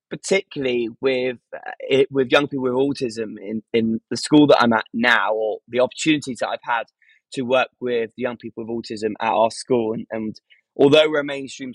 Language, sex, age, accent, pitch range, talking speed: English, male, 20-39, British, 115-140 Hz, 200 wpm